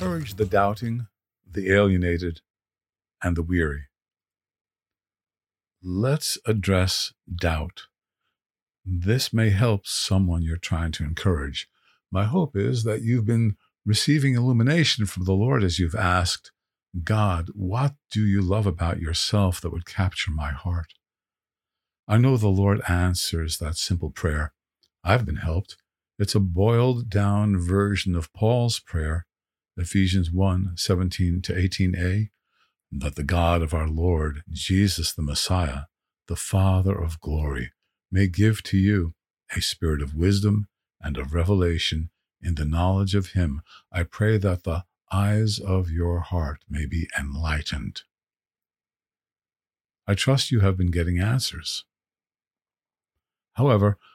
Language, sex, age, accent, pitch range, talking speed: English, male, 50-69, American, 85-105 Hz, 125 wpm